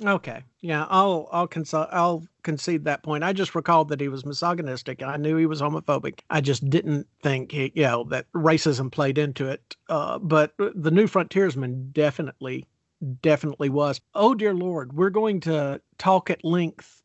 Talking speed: 180 wpm